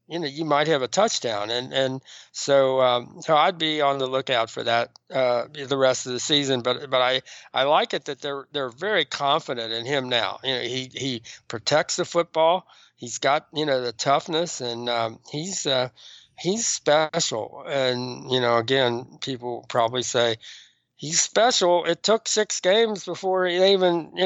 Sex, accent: male, American